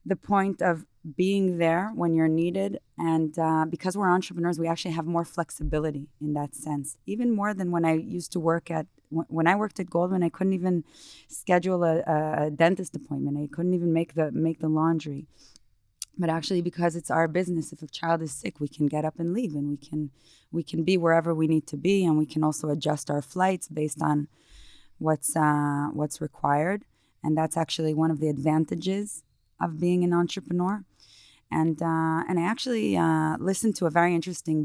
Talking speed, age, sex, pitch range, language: 200 wpm, 20-39, female, 150-175 Hz, Hebrew